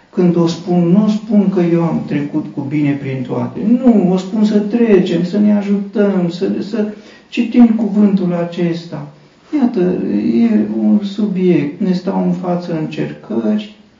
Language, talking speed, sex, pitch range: Romanian, 150 wpm, male, 130-185 Hz